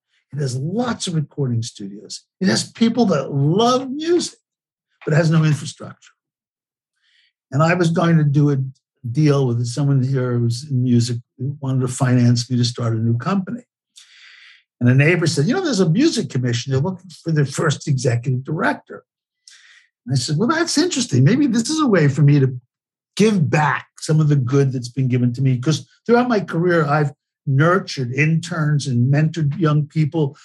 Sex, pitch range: male, 125-170 Hz